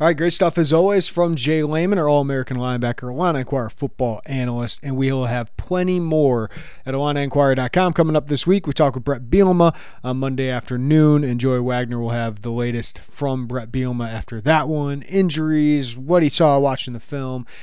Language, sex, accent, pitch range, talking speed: English, male, American, 125-170 Hz, 185 wpm